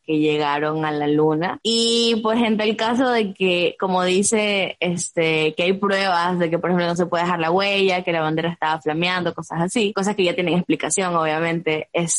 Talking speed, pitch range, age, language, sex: 210 wpm, 165-205 Hz, 10-29, Spanish, female